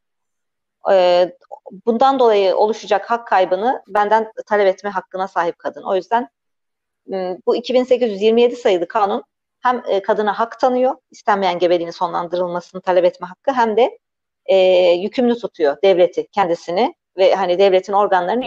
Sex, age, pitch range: female, 40-59, 185-235 Hz